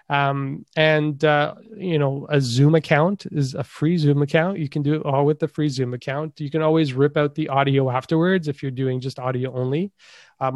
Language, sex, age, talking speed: English, male, 30-49, 215 wpm